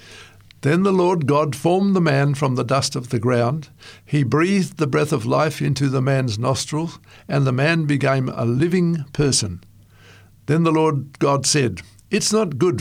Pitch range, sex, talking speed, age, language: 115-150 Hz, male, 180 wpm, 60-79, English